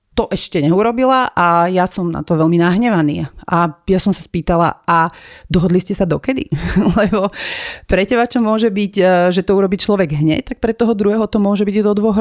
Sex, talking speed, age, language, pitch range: female, 195 wpm, 40-59, Slovak, 165-200 Hz